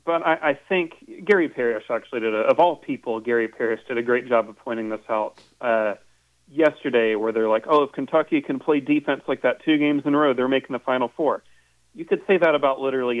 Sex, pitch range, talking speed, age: male, 115-145 Hz, 230 wpm, 40-59